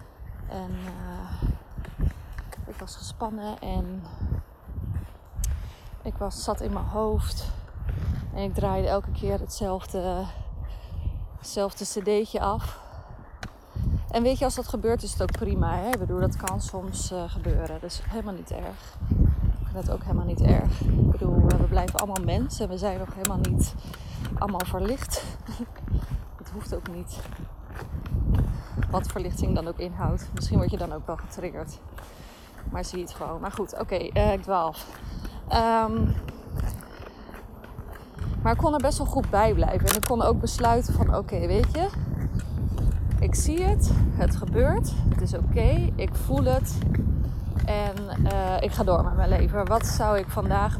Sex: female